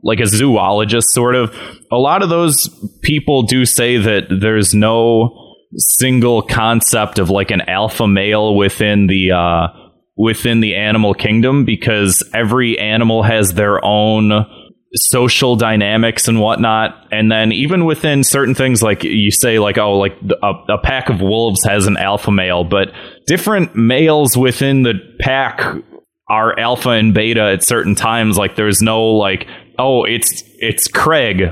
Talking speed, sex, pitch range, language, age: 155 wpm, male, 100-120 Hz, English, 20-39